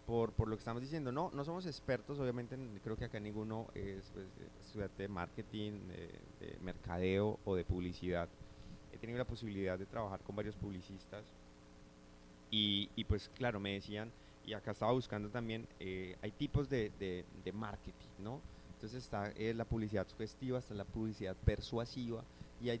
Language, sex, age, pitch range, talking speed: Spanish, male, 30-49, 100-120 Hz, 175 wpm